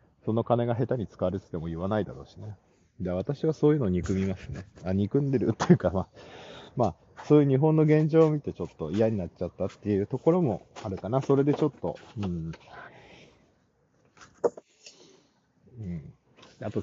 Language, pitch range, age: Japanese, 90-130 Hz, 40-59